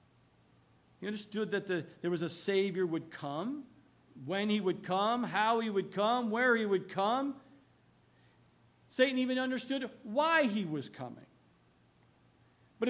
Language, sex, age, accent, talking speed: English, male, 50-69, American, 135 wpm